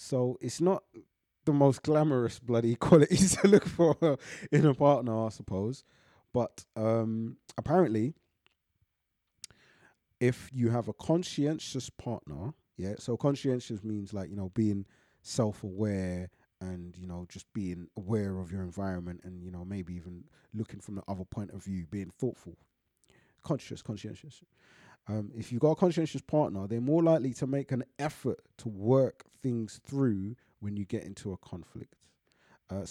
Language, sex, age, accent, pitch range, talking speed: English, male, 20-39, British, 100-130 Hz, 150 wpm